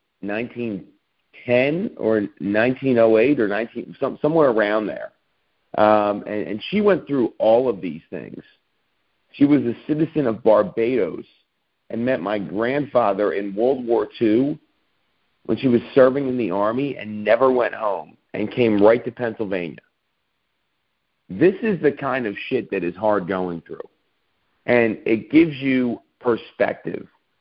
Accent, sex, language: American, male, English